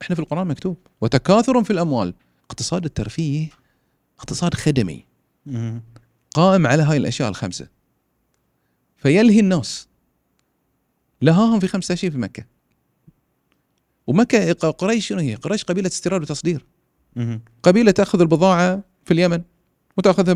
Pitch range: 125-175 Hz